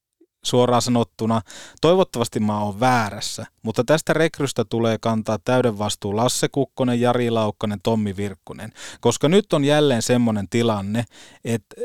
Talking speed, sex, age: 130 wpm, male, 30-49